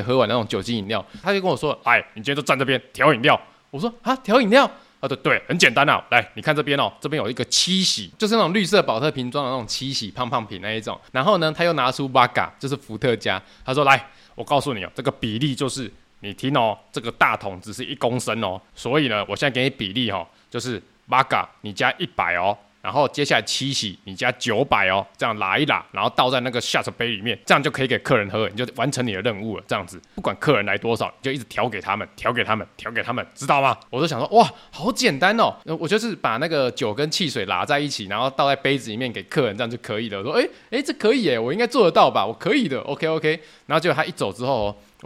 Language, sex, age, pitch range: Chinese, male, 20-39, 115-160 Hz